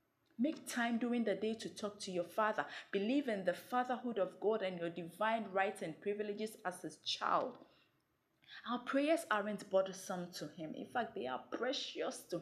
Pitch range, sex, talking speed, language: 185-260 Hz, female, 180 wpm, English